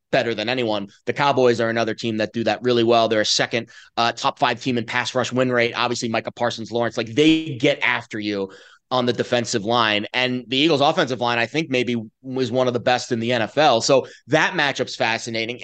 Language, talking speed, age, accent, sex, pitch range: English, 225 wpm, 30-49, American, male, 115-145 Hz